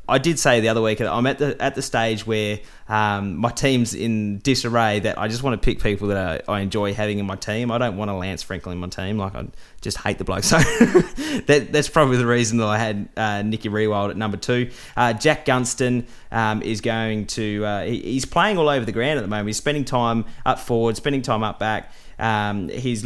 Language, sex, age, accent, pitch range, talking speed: English, male, 20-39, Australian, 105-125 Hz, 240 wpm